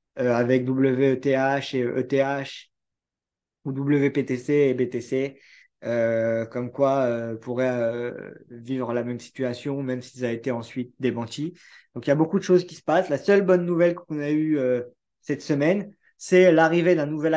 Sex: male